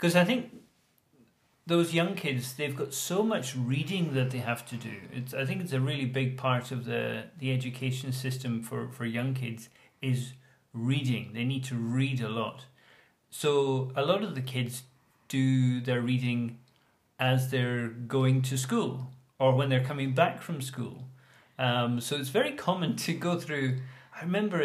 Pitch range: 125-145 Hz